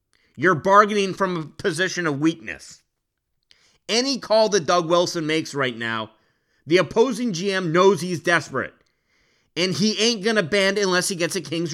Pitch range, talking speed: 160-210 Hz, 165 wpm